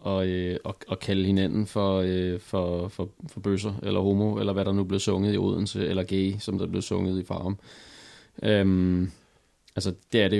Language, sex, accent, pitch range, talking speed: Danish, male, native, 95-115 Hz, 215 wpm